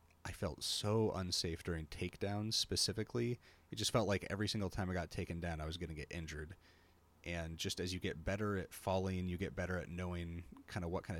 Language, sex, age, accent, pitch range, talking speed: English, male, 30-49, American, 85-100 Hz, 215 wpm